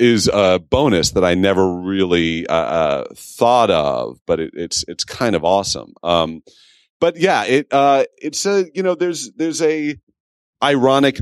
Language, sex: English, male